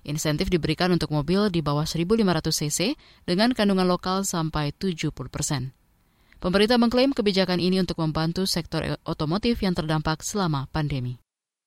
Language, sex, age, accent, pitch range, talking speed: Indonesian, female, 20-39, native, 155-195 Hz, 130 wpm